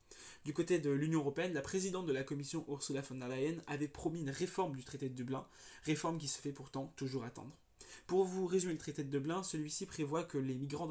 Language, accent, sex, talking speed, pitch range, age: French, French, male, 225 wpm, 135-160 Hz, 20-39